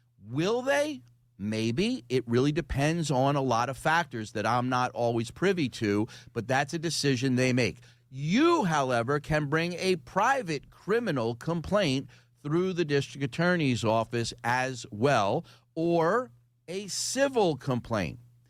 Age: 40-59